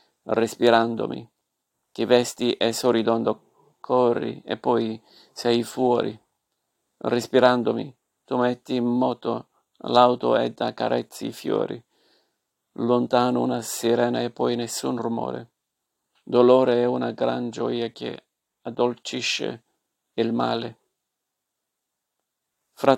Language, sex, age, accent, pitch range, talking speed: Italian, male, 40-59, native, 115-125 Hz, 100 wpm